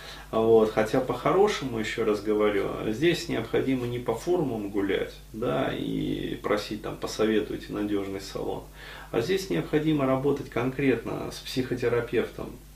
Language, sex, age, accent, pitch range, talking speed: Russian, male, 30-49, native, 110-145 Hz, 120 wpm